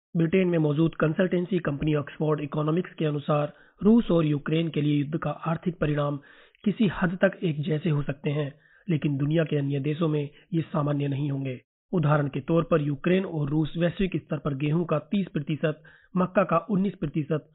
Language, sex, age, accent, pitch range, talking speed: Hindi, male, 30-49, native, 150-175 Hz, 180 wpm